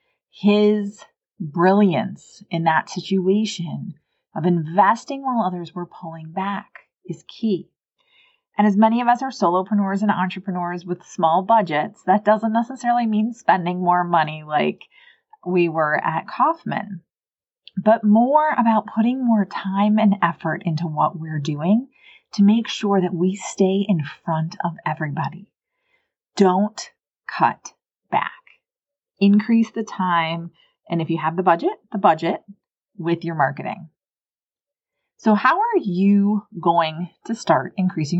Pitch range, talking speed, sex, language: 170-220 Hz, 135 wpm, female, English